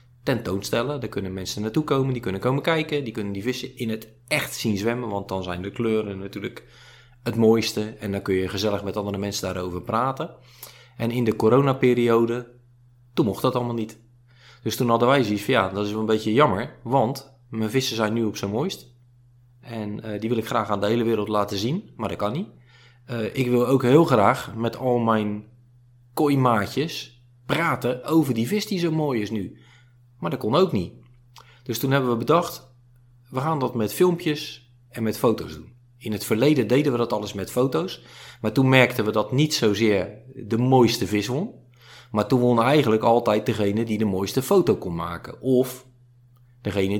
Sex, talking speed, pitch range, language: male, 200 wpm, 110-130 Hz, Dutch